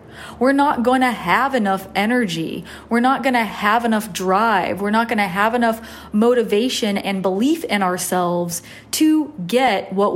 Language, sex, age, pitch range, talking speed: English, female, 30-49, 195-245 Hz, 165 wpm